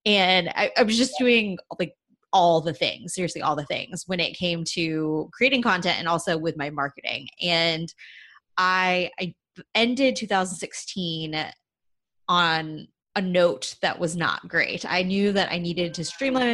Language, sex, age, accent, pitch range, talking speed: English, female, 20-39, American, 165-210 Hz, 160 wpm